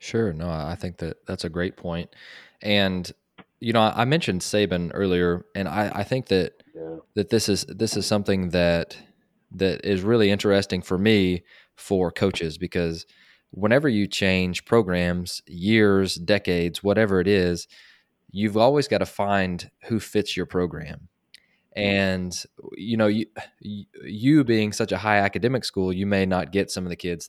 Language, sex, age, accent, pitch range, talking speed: English, male, 20-39, American, 90-105 Hz, 165 wpm